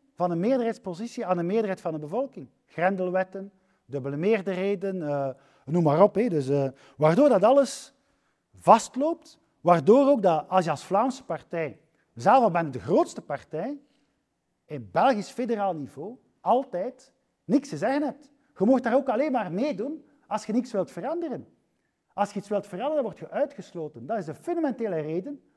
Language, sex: Dutch, male